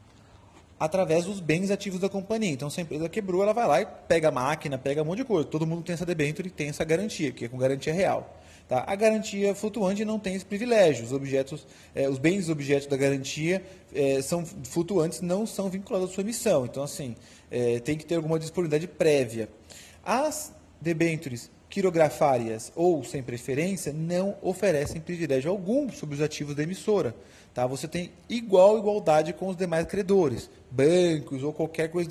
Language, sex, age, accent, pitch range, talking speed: Portuguese, male, 30-49, Brazilian, 140-195 Hz, 185 wpm